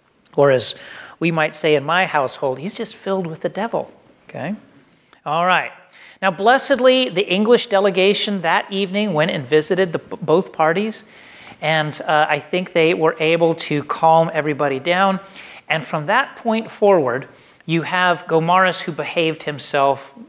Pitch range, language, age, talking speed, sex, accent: 155-200 Hz, English, 40-59, 155 wpm, male, American